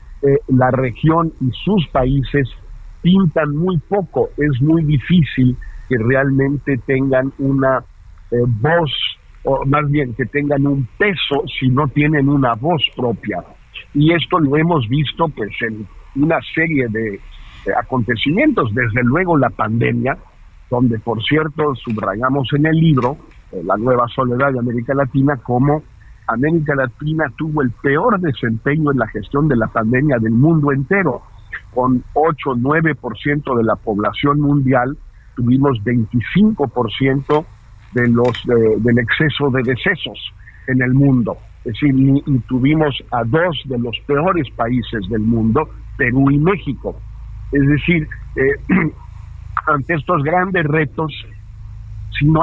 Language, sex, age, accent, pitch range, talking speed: Spanish, male, 50-69, Mexican, 120-150 Hz, 140 wpm